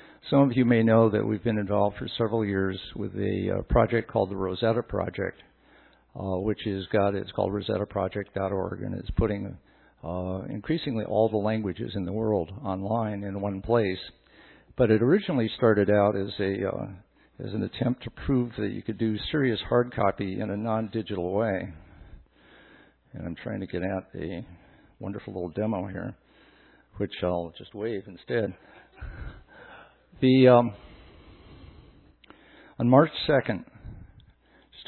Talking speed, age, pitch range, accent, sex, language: 150 wpm, 60-79, 95-120 Hz, American, male, English